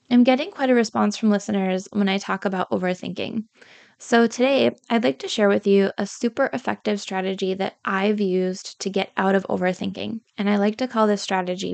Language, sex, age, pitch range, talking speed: English, female, 20-39, 190-220 Hz, 200 wpm